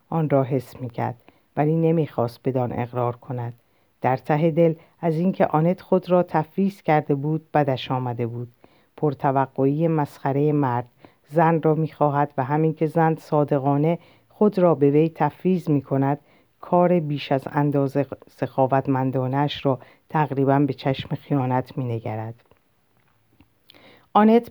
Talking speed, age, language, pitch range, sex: 130 wpm, 50-69, Persian, 135-165 Hz, female